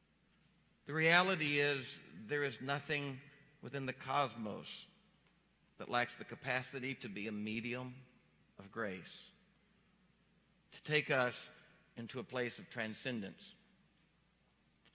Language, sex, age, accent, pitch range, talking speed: English, male, 50-69, American, 115-145 Hz, 110 wpm